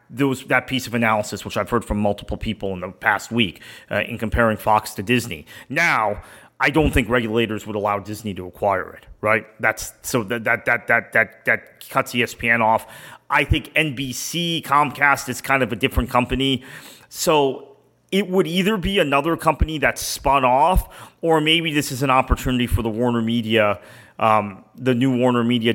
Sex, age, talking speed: male, 30-49, 185 wpm